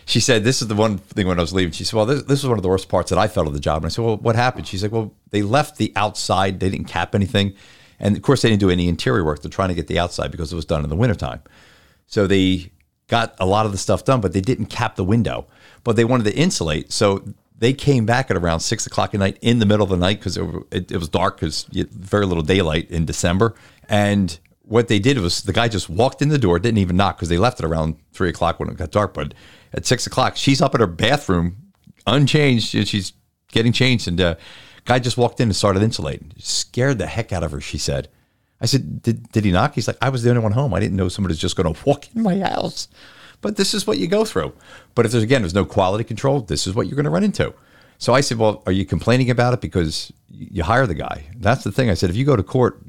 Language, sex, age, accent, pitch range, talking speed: English, male, 40-59, American, 90-120 Hz, 280 wpm